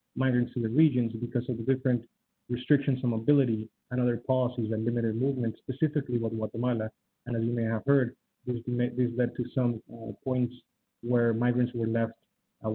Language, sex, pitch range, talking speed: English, male, 120-140 Hz, 175 wpm